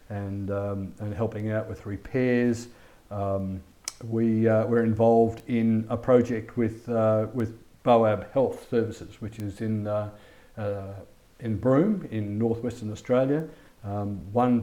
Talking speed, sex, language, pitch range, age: 135 wpm, male, English, 110-130 Hz, 50-69